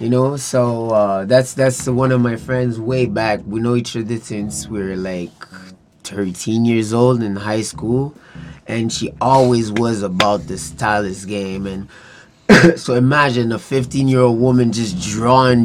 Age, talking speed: 20-39, 160 wpm